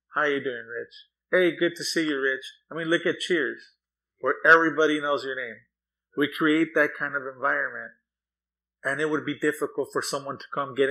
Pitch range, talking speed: 130-165 Hz, 200 wpm